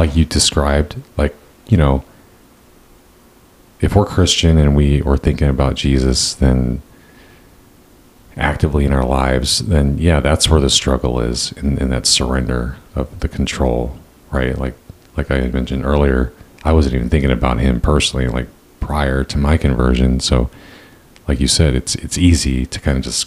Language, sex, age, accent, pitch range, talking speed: English, male, 40-59, American, 65-75 Hz, 160 wpm